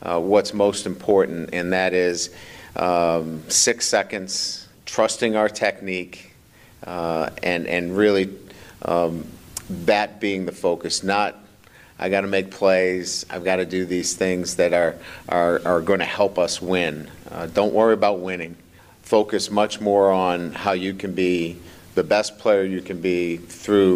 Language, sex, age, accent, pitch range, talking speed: English, male, 50-69, American, 85-100 Hz, 155 wpm